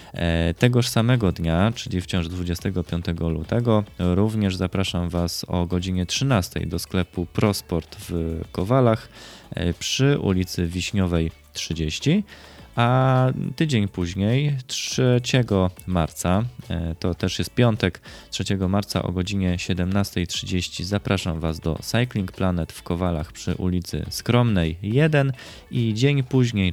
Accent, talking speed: native, 110 wpm